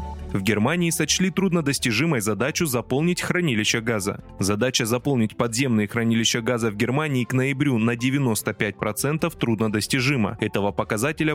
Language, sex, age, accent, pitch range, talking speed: Russian, male, 20-39, native, 110-150 Hz, 115 wpm